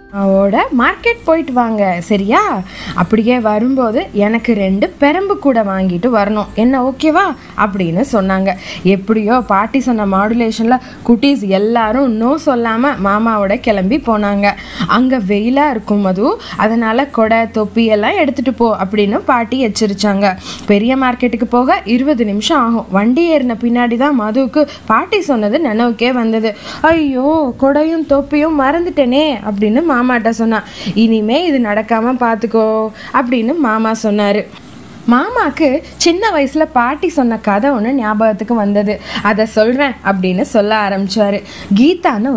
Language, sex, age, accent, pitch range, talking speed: Tamil, female, 20-39, native, 210-270 Hz, 110 wpm